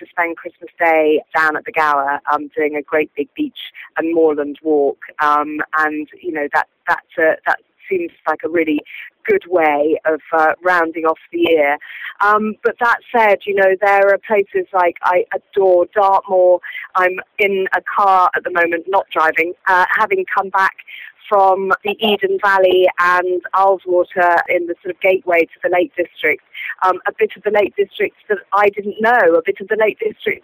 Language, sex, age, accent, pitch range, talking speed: English, female, 40-59, British, 175-220 Hz, 185 wpm